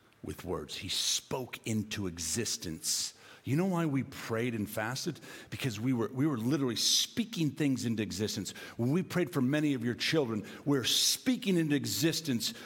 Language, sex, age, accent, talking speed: English, male, 50-69, American, 170 wpm